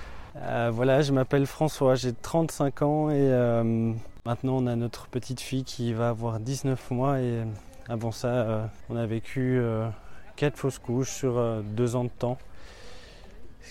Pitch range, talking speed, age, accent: 115-135 Hz, 170 wpm, 20-39, French